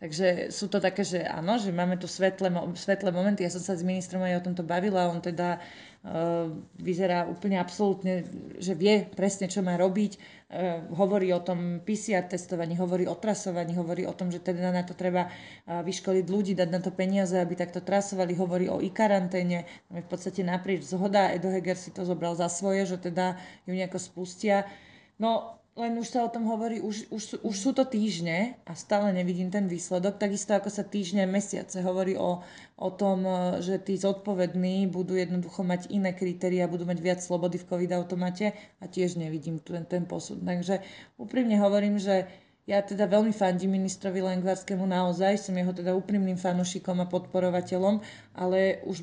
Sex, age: female, 30-49